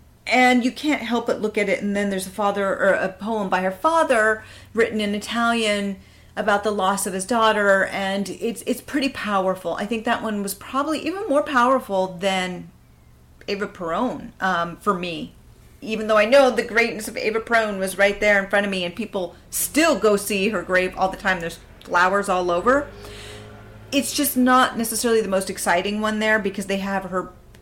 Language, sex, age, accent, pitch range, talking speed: English, female, 40-59, American, 190-235 Hz, 195 wpm